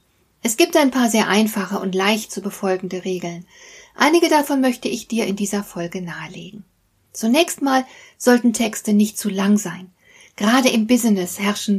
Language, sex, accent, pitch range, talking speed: German, female, German, 200-255 Hz, 165 wpm